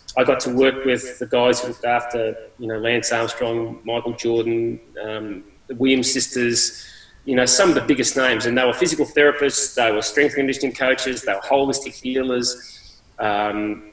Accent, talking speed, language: Australian, 180 wpm, English